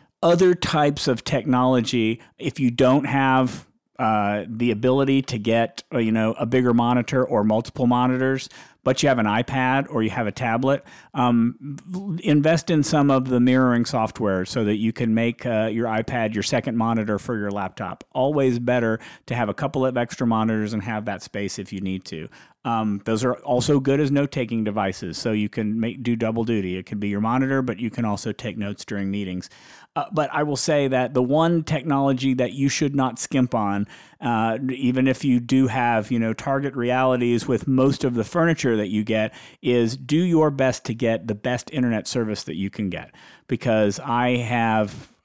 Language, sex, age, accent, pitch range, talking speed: English, male, 50-69, American, 110-130 Hz, 195 wpm